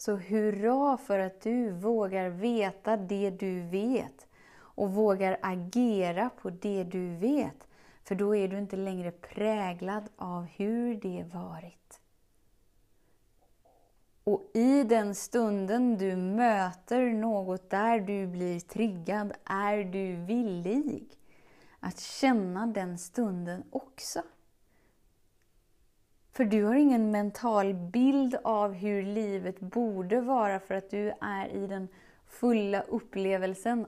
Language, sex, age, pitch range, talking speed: Swedish, female, 30-49, 190-230 Hz, 115 wpm